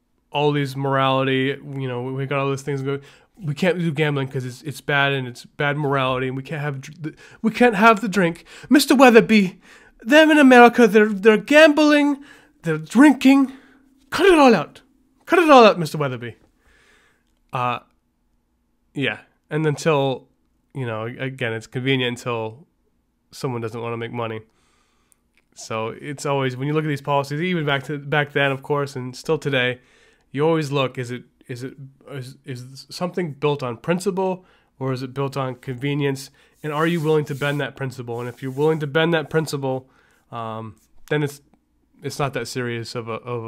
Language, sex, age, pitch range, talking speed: English, male, 20-39, 125-160 Hz, 185 wpm